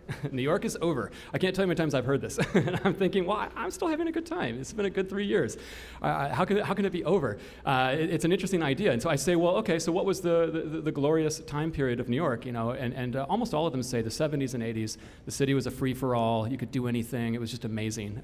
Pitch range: 115-150 Hz